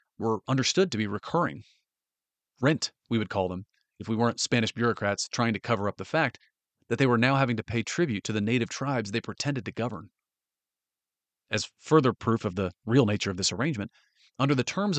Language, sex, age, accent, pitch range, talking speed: English, male, 40-59, American, 110-140 Hz, 200 wpm